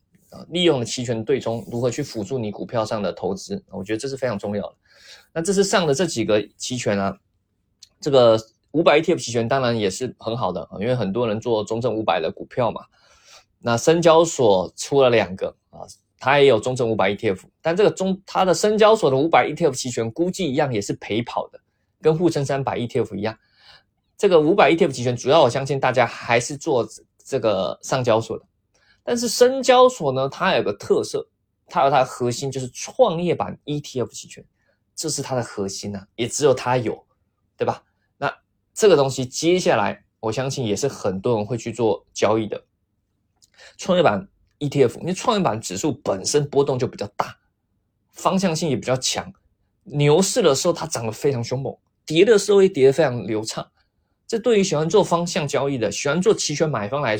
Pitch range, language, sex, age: 110-165 Hz, Chinese, male, 20-39